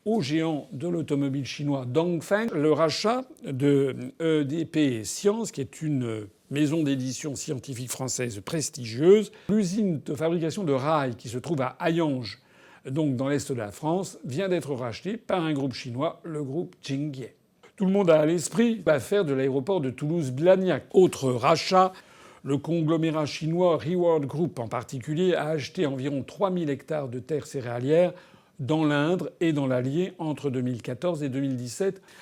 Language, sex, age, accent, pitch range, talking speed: French, male, 60-79, French, 140-175 Hz, 155 wpm